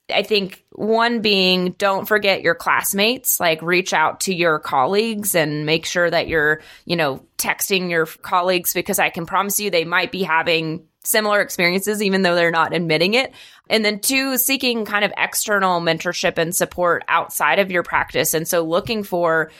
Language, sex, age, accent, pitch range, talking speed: English, female, 20-39, American, 170-200 Hz, 180 wpm